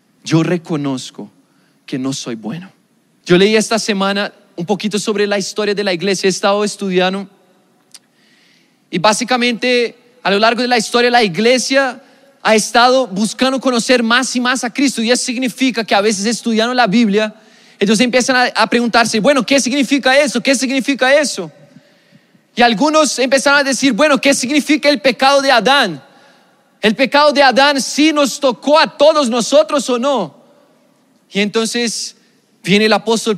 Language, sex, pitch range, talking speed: Spanish, male, 190-255 Hz, 160 wpm